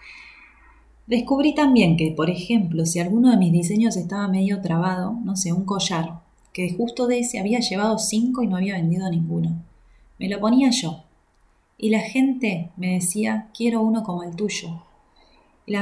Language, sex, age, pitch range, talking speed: Spanish, female, 20-39, 170-215 Hz, 165 wpm